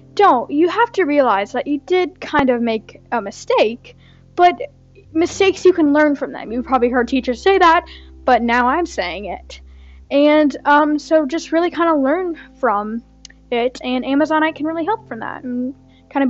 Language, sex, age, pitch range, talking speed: English, female, 10-29, 255-330 Hz, 190 wpm